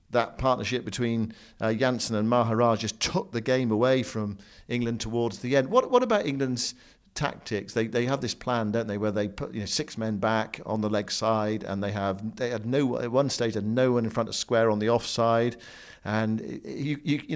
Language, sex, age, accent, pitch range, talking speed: English, male, 50-69, British, 110-130 Hz, 220 wpm